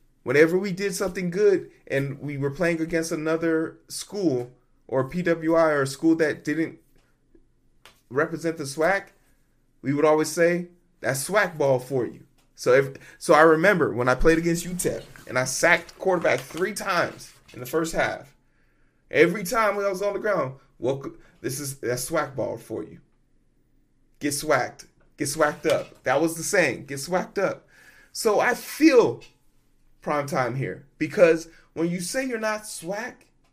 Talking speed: 165 wpm